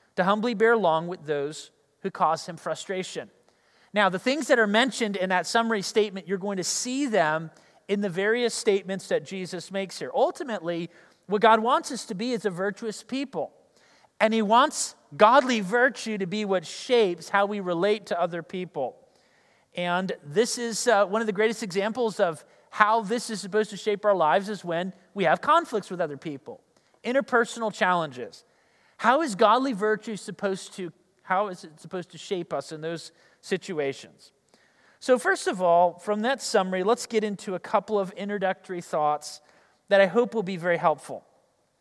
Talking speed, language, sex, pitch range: 180 wpm, English, male, 180-225 Hz